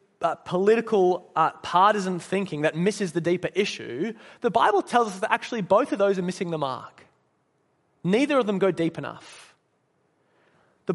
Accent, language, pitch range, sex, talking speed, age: Australian, English, 175-230 Hz, male, 170 wpm, 30-49